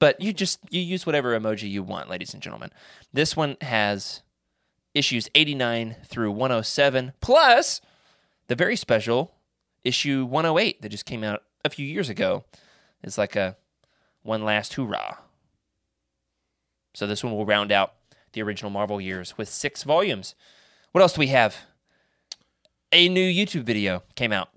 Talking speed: 155 wpm